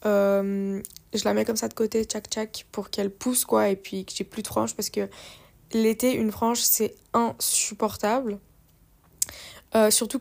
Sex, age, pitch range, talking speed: female, 20-39, 205-235 Hz, 175 wpm